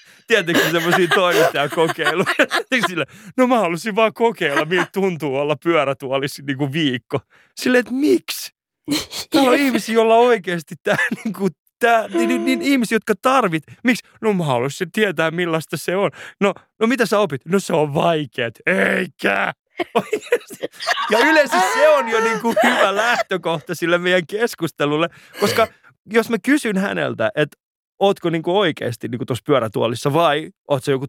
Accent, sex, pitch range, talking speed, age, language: native, male, 135-205 Hz, 145 wpm, 30-49, Finnish